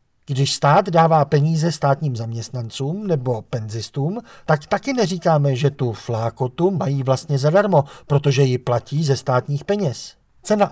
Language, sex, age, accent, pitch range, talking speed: Czech, male, 50-69, native, 130-185 Hz, 135 wpm